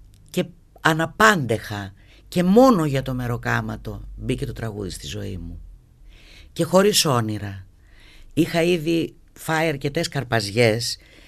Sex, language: female, Greek